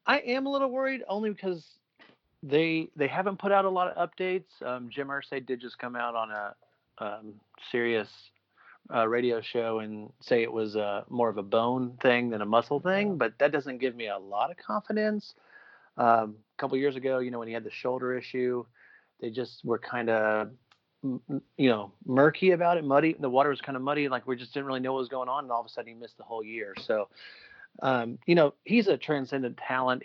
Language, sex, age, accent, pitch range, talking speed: English, male, 30-49, American, 115-145 Hz, 220 wpm